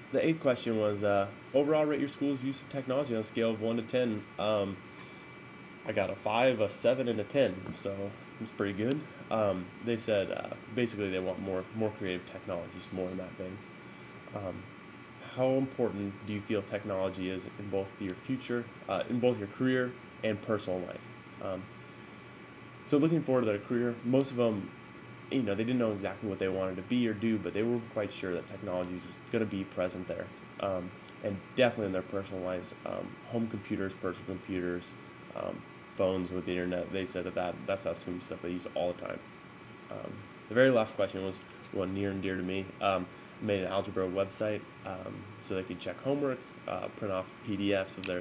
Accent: American